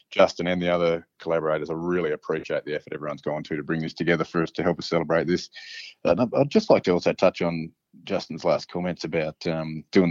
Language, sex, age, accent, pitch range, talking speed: English, male, 20-39, Australian, 80-90 Hz, 225 wpm